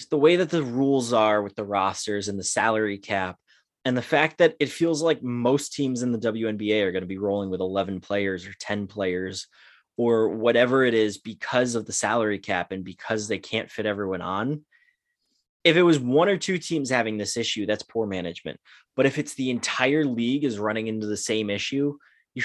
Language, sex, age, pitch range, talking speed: English, male, 20-39, 105-130 Hz, 210 wpm